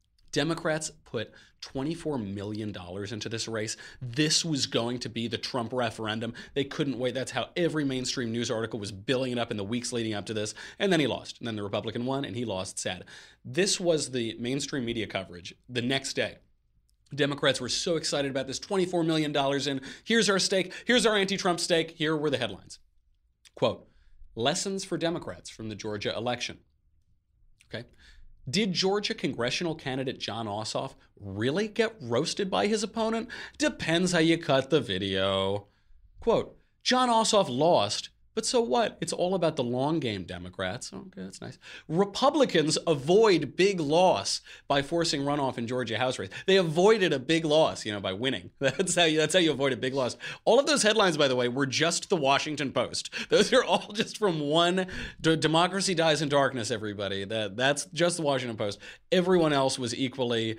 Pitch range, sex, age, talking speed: 110-170 Hz, male, 30-49, 185 wpm